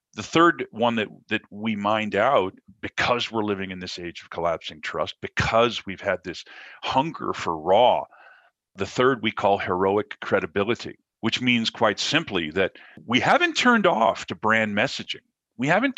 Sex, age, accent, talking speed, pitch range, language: male, 50-69, American, 165 wpm, 100-125 Hz, English